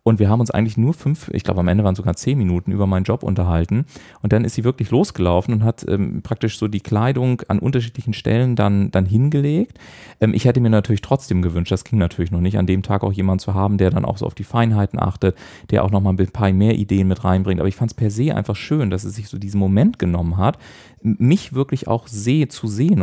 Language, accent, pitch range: German, German, 100-125 Hz